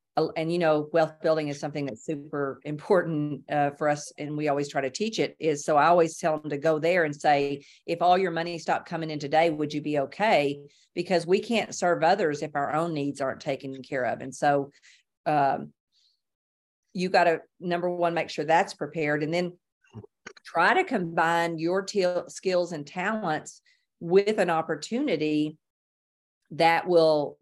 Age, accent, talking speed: 50-69, American, 180 wpm